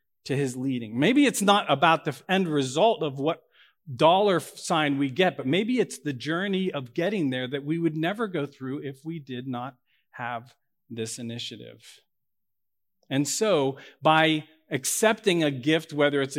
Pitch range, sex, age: 135-170 Hz, male, 40-59